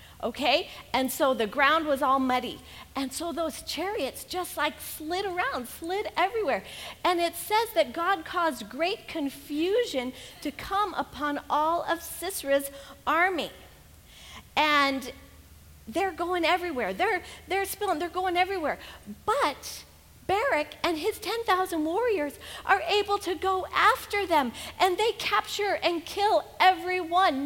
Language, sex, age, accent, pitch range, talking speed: English, female, 40-59, American, 275-375 Hz, 135 wpm